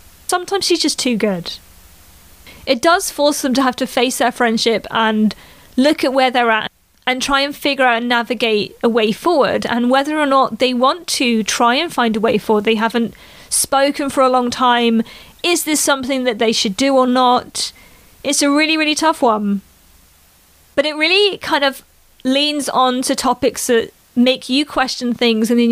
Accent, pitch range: British, 230-290 Hz